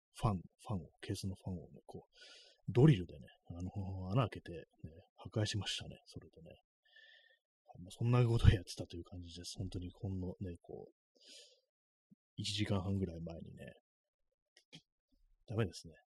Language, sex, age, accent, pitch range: Japanese, male, 30-49, native, 90-120 Hz